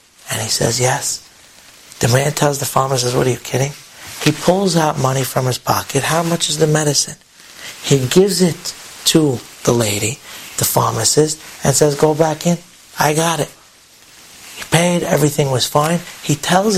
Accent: American